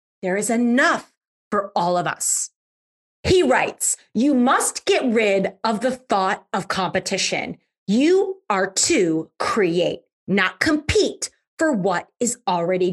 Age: 30-49